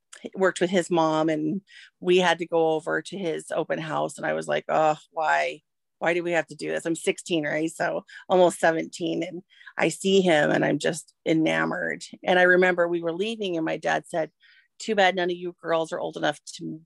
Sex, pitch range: female, 160-185 Hz